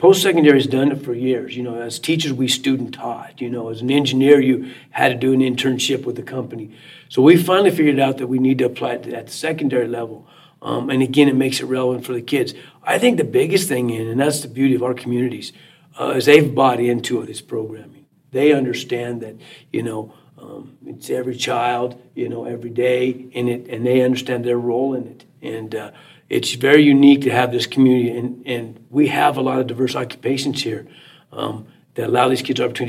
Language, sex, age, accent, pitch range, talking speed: English, male, 50-69, American, 125-150 Hz, 215 wpm